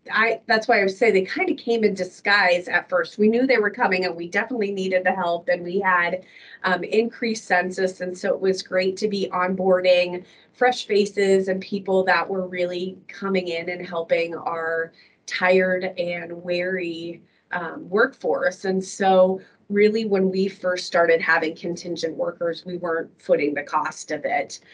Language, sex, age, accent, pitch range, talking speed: English, female, 30-49, American, 170-195 Hz, 175 wpm